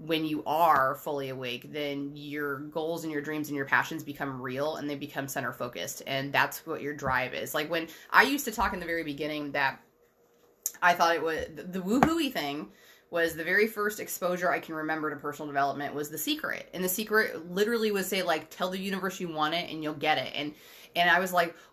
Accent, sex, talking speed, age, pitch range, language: American, female, 225 wpm, 20-39, 145-215 Hz, English